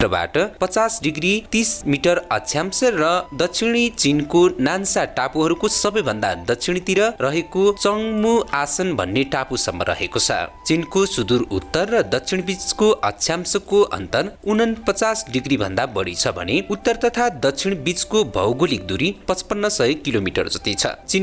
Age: 30-49